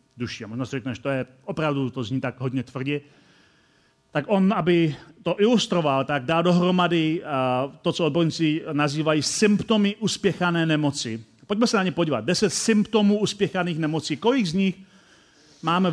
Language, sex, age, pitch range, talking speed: Czech, male, 40-59, 150-205 Hz, 155 wpm